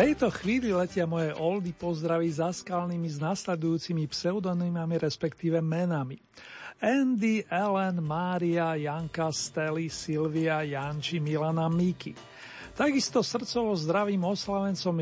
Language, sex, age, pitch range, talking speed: Slovak, male, 40-59, 160-195 Hz, 105 wpm